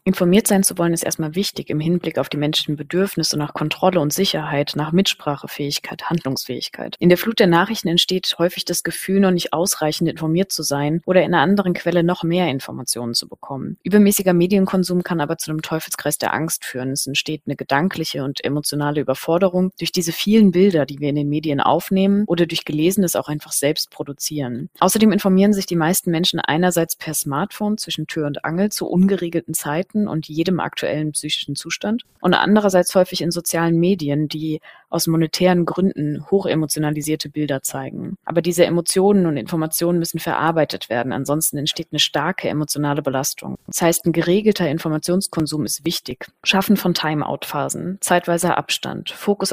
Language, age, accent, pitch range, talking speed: German, 30-49, German, 150-185 Hz, 170 wpm